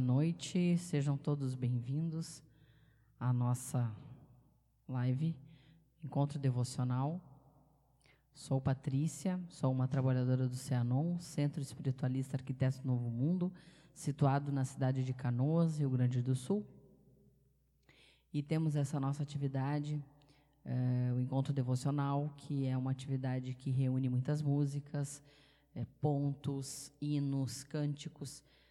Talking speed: 105 wpm